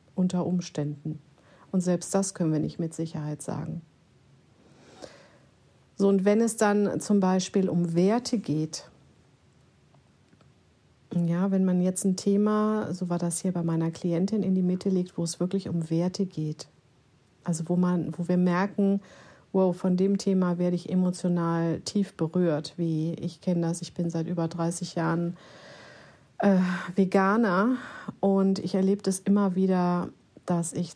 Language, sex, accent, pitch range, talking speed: German, female, German, 170-195 Hz, 145 wpm